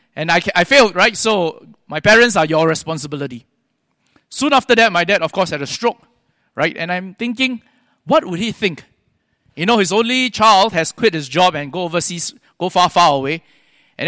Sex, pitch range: male, 160-225 Hz